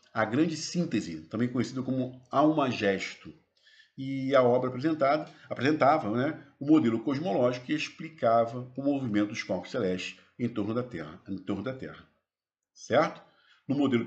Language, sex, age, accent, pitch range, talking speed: Portuguese, male, 50-69, Brazilian, 105-155 Hz, 155 wpm